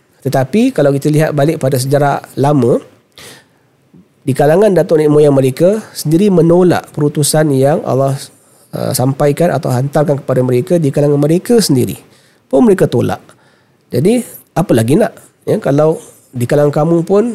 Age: 40-59